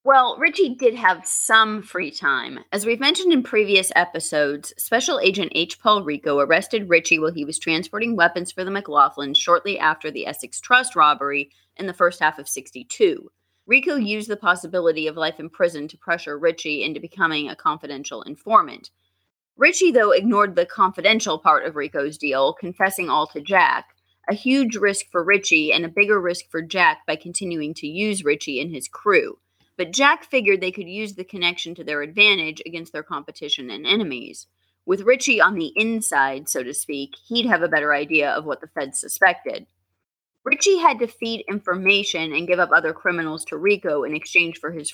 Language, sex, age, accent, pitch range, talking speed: English, female, 30-49, American, 155-215 Hz, 185 wpm